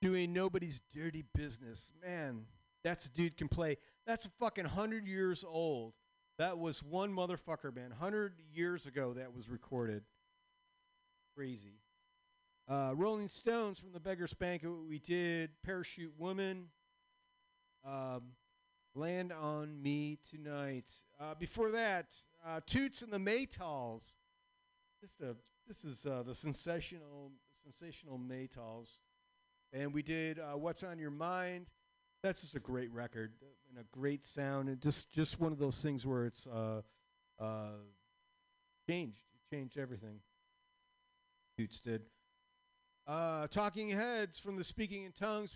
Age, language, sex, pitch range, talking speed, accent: 50-69, English, male, 135-200 Hz, 135 wpm, American